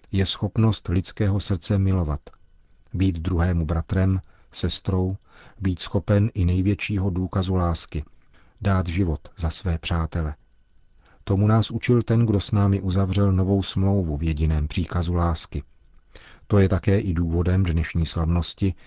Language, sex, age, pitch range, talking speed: Czech, male, 40-59, 85-95 Hz, 130 wpm